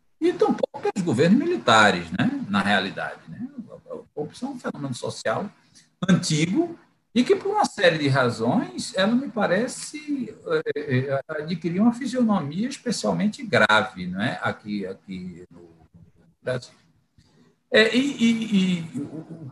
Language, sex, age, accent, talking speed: Portuguese, male, 60-79, Brazilian, 130 wpm